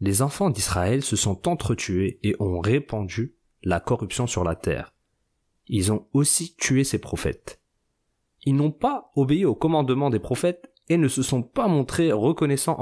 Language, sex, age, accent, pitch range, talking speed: French, male, 30-49, French, 105-150 Hz, 165 wpm